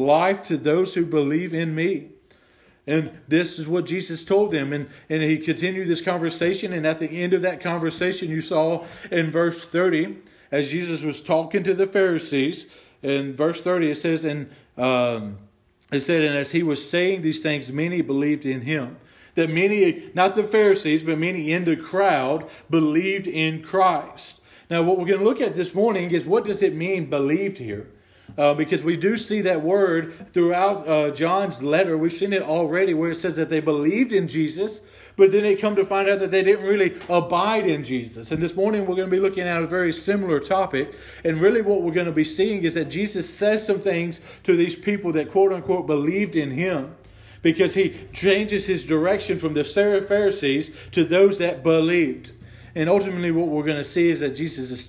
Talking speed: 200 wpm